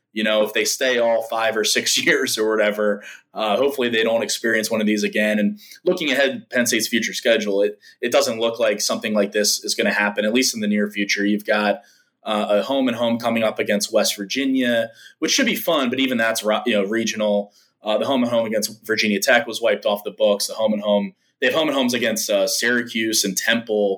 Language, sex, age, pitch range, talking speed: English, male, 20-39, 105-120 Hz, 240 wpm